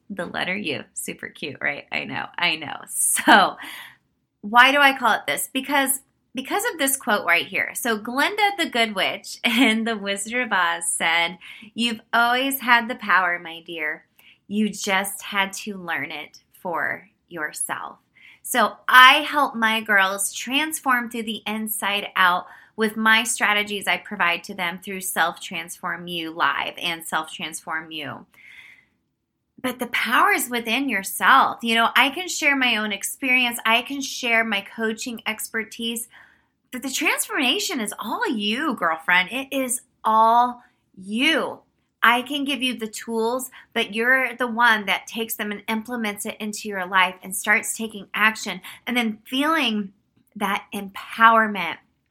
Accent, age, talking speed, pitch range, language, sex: American, 20-39, 155 wpm, 195-250 Hz, English, female